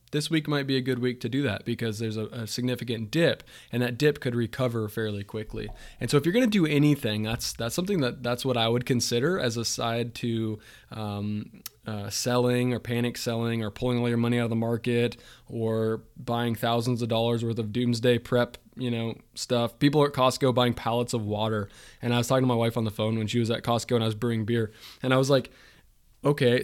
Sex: male